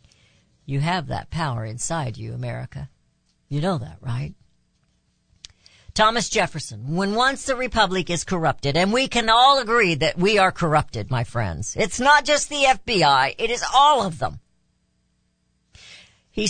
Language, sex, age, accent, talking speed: English, female, 50-69, American, 150 wpm